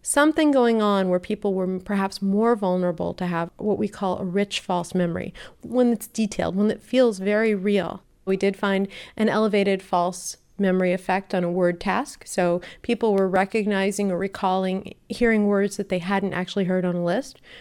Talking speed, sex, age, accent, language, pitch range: 185 wpm, female, 40-59, American, English, 185-210 Hz